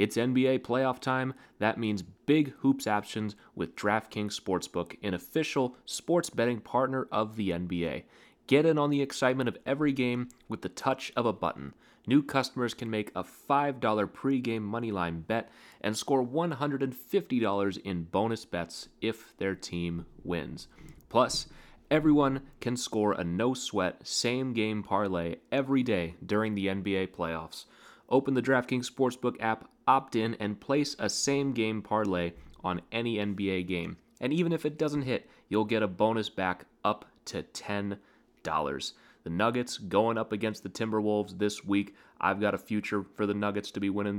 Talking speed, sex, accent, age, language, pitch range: 155 wpm, male, American, 30-49, English, 100-125 Hz